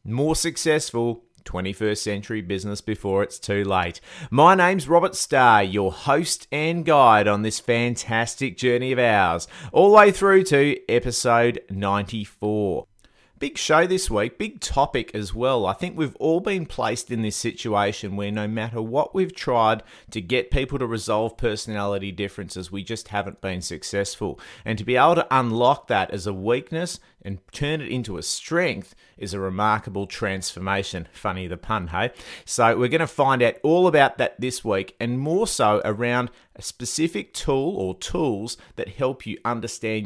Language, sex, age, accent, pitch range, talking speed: English, male, 30-49, Australian, 100-130 Hz, 170 wpm